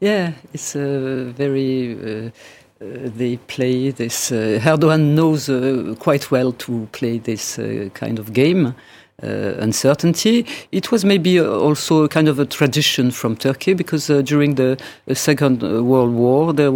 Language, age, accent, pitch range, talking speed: English, 50-69, French, 125-155 Hz, 150 wpm